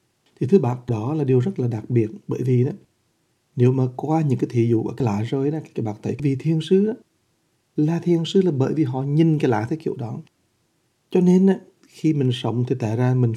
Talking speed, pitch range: 295 wpm, 125-160 Hz